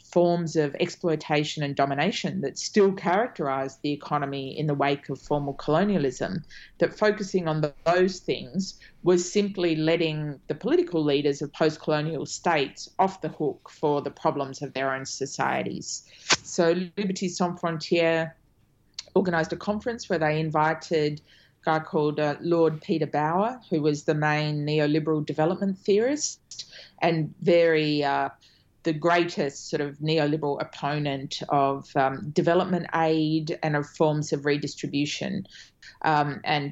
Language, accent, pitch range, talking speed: English, Australian, 145-175 Hz, 140 wpm